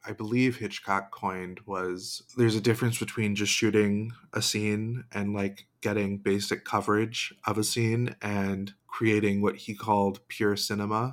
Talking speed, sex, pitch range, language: 150 wpm, male, 100-115 Hz, English